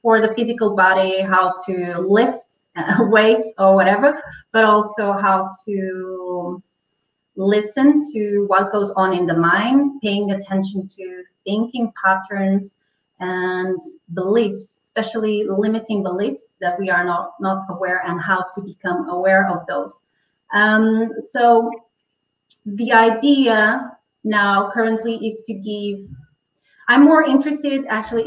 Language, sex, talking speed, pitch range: English, female, 125 wpm, 185-220 Hz